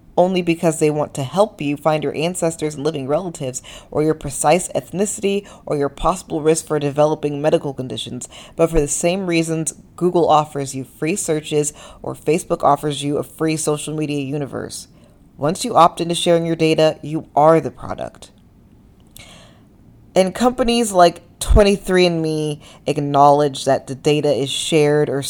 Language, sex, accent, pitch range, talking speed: English, female, American, 145-180 Hz, 155 wpm